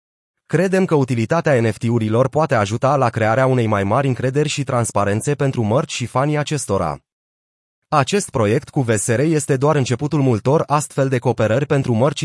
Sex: male